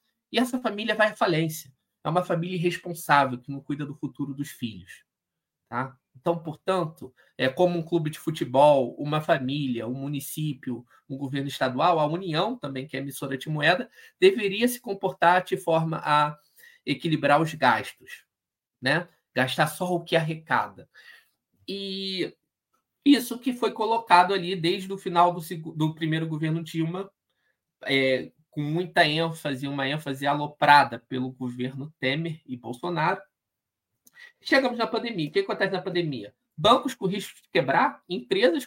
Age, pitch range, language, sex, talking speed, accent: 20-39, 145-195 Hz, Portuguese, male, 150 wpm, Brazilian